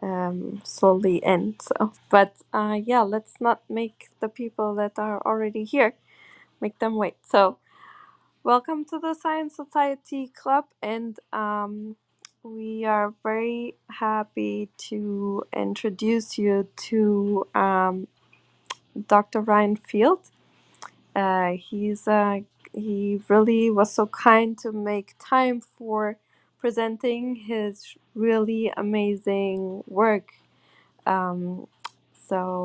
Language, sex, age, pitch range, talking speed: English, female, 20-39, 200-235 Hz, 110 wpm